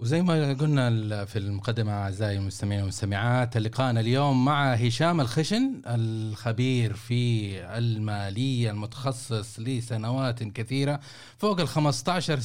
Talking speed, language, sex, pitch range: 105 wpm, Arabic, male, 110-135 Hz